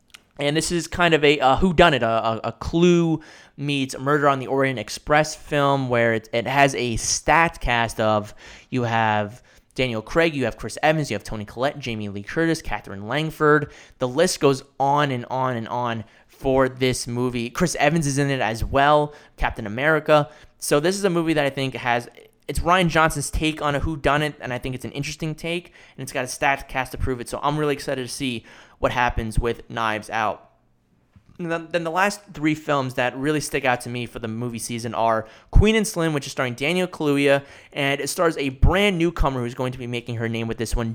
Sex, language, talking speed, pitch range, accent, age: male, English, 215 wpm, 120-150 Hz, American, 20-39